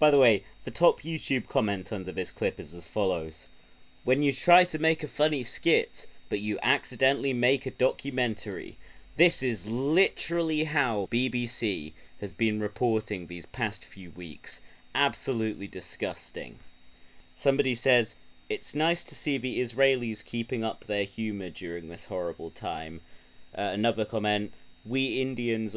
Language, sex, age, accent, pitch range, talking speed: English, male, 30-49, British, 100-135 Hz, 145 wpm